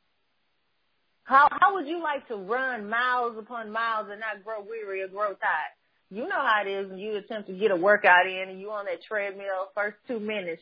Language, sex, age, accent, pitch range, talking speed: English, female, 30-49, American, 205-280 Hz, 215 wpm